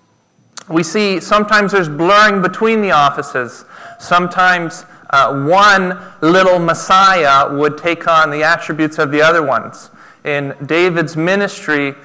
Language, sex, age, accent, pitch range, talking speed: English, male, 30-49, American, 145-185 Hz, 125 wpm